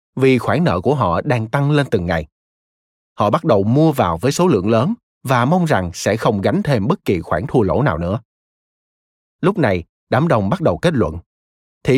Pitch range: 95-145 Hz